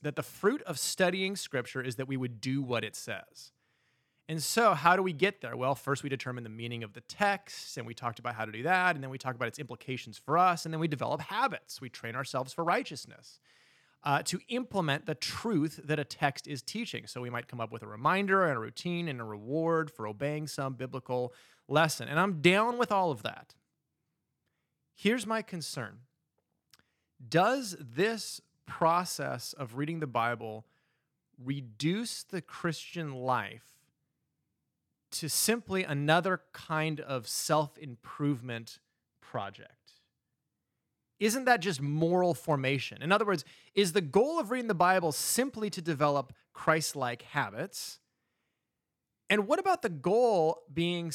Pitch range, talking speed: 130-180 Hz, 165 wpm